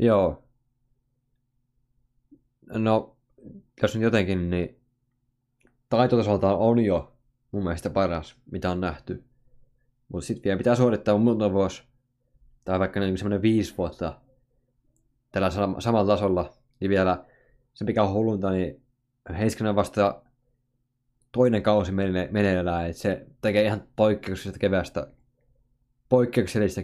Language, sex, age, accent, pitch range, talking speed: Finnish, male, 20-39, native, 100-125 Hz, 115 wpm